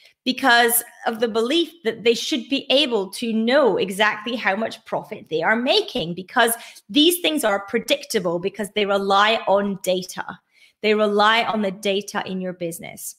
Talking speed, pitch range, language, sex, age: 165 wpm, 185-230 Hz, English, female, 30-49